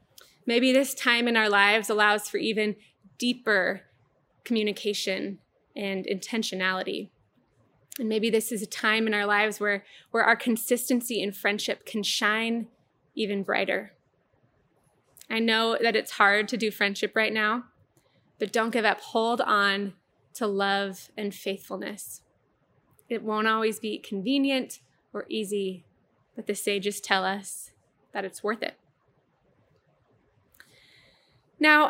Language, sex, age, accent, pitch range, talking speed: English, female, 20-39, American, 205-235 Hz, 130 wpm